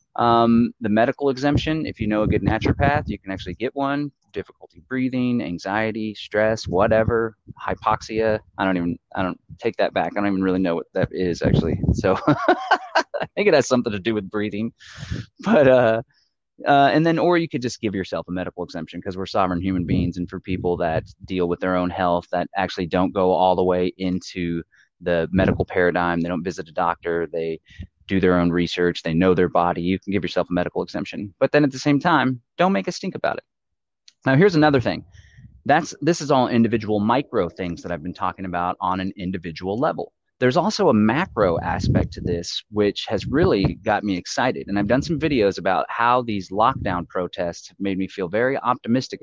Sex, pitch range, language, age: male, 90-125 Hz, English, 20-39